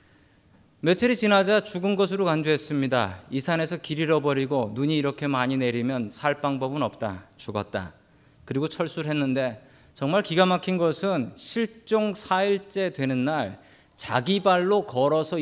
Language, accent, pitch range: Korean, native, 135-195 Hz